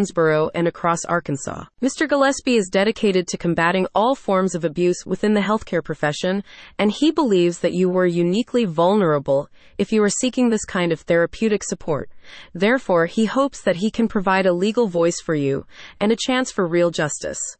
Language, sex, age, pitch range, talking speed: English, female, 30-49, 170-225 Hz, 175 wpm